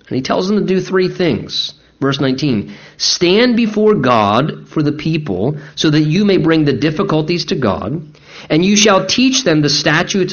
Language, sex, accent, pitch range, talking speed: English, male, American, 135-190 Hz, 185 wpm